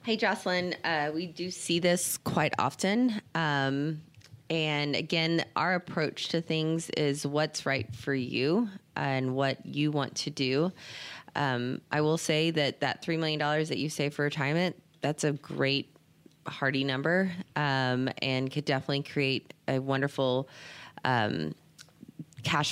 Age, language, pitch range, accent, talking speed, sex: 20-39, English, 135-160 Hz, American, 140 wpm, female